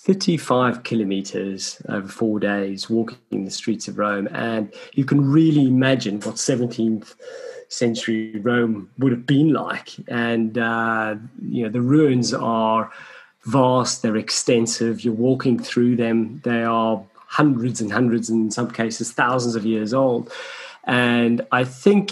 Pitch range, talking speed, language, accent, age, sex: 115-145 Hz, 145 wpm, English, British, 30-49, male